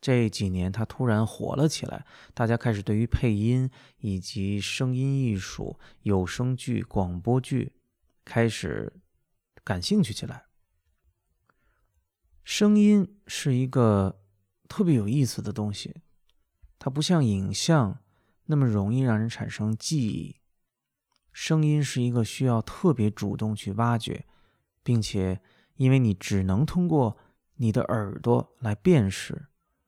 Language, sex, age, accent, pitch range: Chinese, male, 20-39, native, 100-130 Hz